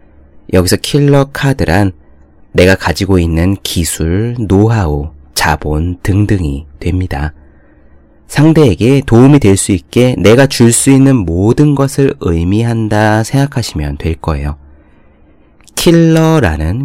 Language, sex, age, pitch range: Korean, male, 30-49, 80-125 Hz